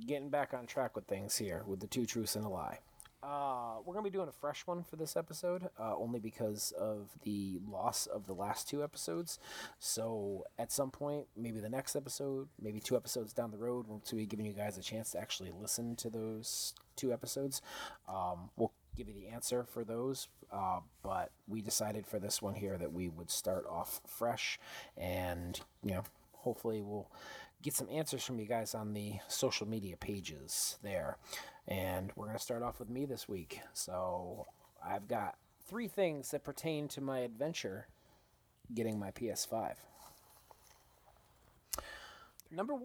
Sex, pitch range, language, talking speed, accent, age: male, 105-145 Hz, English, 175 wpm, American, 30-49